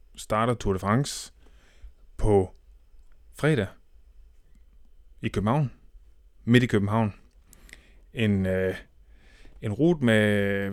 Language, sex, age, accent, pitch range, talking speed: Danish, male, 20-39, native, 90-115 Hz, 90 wpm